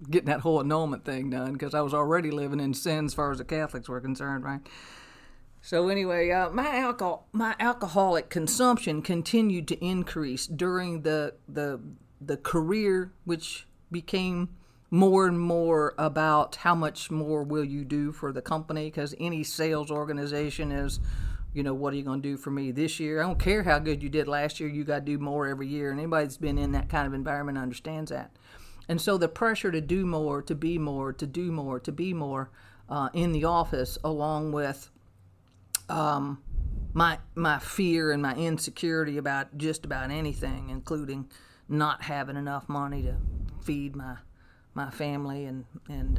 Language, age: English, 50-69